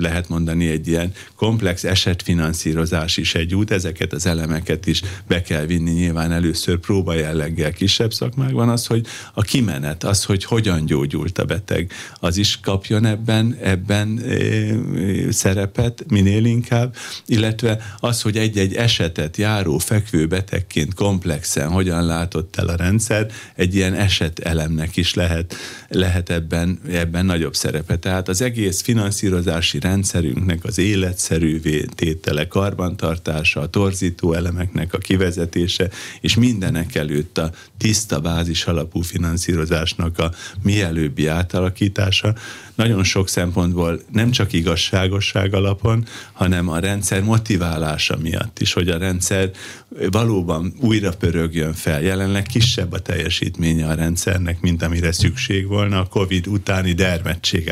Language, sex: Hungarian, male